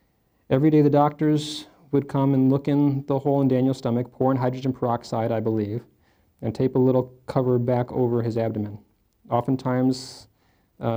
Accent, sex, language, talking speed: American, male, English, 170 wpm